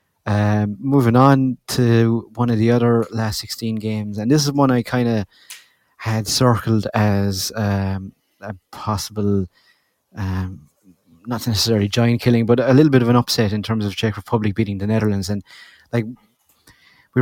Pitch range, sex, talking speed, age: 100-115 Hz, male, 165 wpm, 30-49